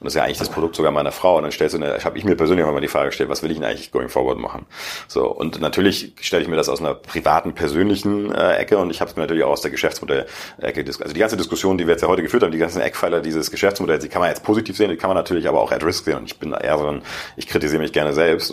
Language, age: German, 40-59